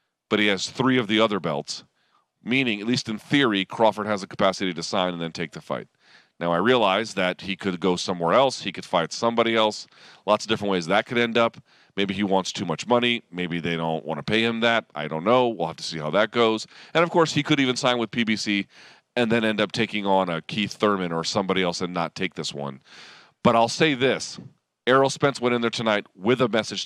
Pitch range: 95-130 Hz